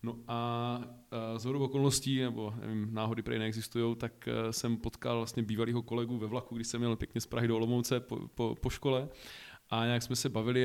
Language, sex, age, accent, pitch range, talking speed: Czech, male, 20-39, native, 110-125 Hz, 210 wpm